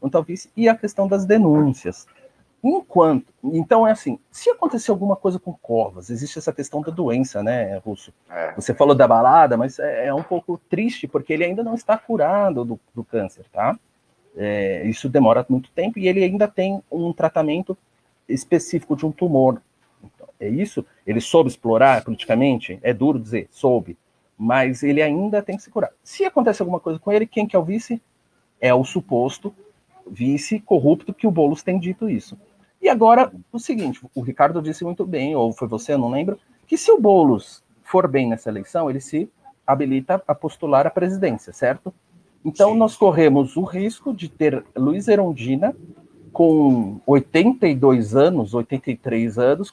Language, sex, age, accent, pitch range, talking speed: Portuguese, male, 40-59, Brazilian, 135-210 Hz, 175 wpm